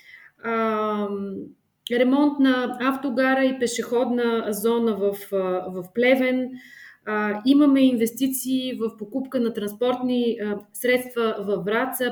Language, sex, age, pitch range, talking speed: Bulgarian, female, 20-39, 215-265 Hz, 105 wpm